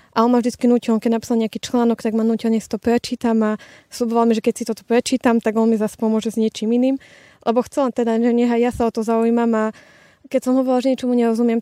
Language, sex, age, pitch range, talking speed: Slovak, female, 20-39, 225-245 Hz, 245 wpm